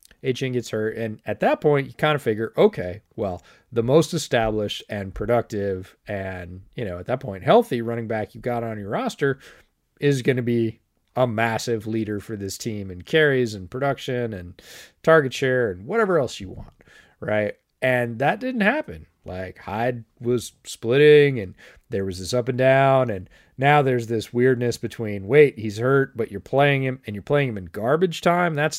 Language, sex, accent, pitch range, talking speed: English, male, American, 105-135 Hz, 190 wpm